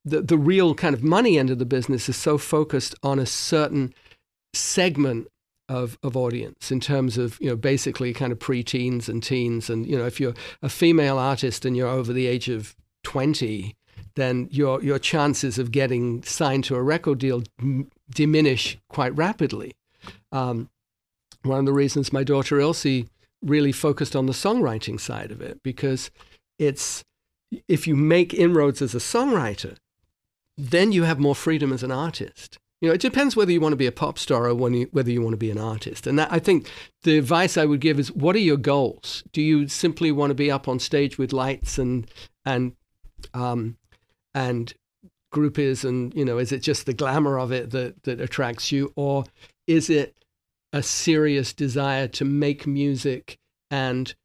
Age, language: 50-69, English